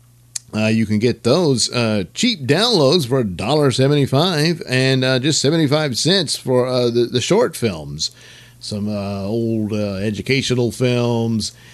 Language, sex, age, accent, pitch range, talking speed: English, male, 50-69, American, 105-130 Hz, 135 wpm